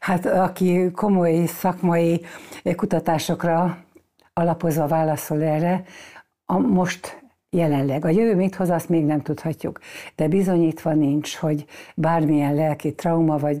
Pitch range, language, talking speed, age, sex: 150-175 Hz, Hungarian, 120 wpm, 60-79, female